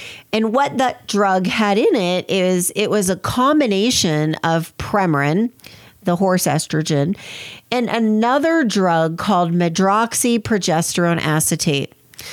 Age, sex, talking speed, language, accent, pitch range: 40-59, female, 110 wpm, English, American, 170-220 Hz